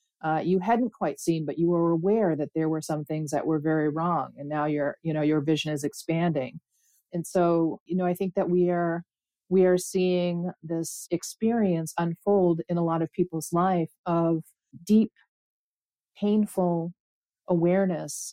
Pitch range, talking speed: 155-180 Hz, 170 wpm